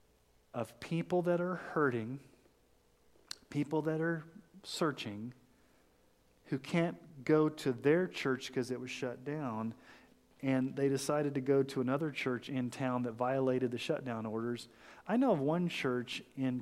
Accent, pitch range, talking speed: American, 120-160 Hz, 150 wpm